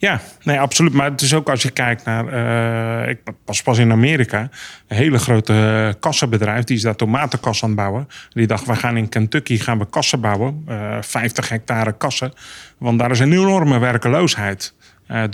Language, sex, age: Dutch, male, 30-49